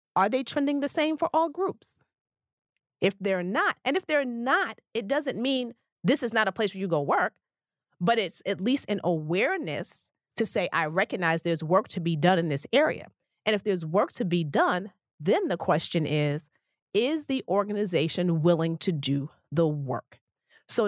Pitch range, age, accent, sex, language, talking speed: 165-215 Hz, 40-59, American, female, English, 185 wpm